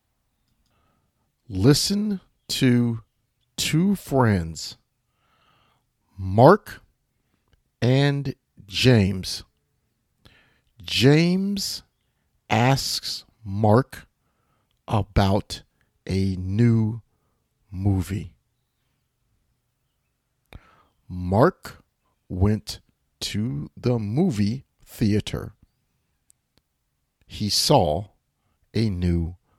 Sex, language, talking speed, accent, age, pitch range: male, English, 50 wpm, American, 50-69, 95-135 Hz